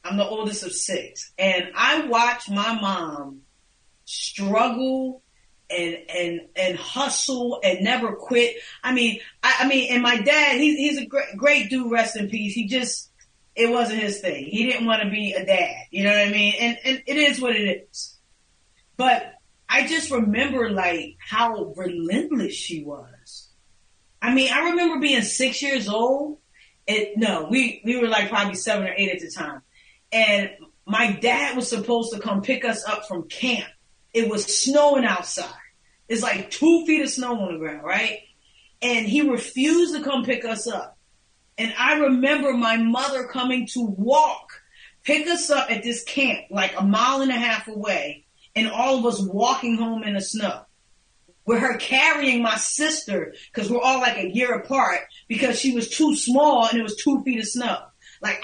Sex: female